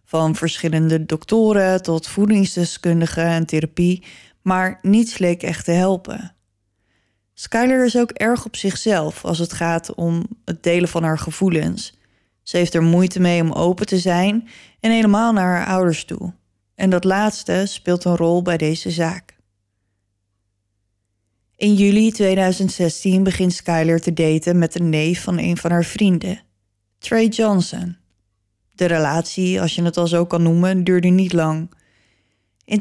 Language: Dutch